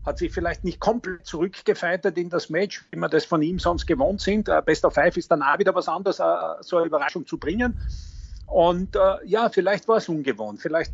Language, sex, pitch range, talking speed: German, male, 140-190 Hz, 210 wpm